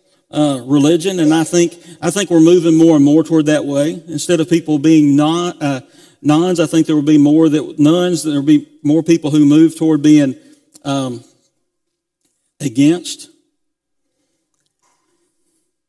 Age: 50-69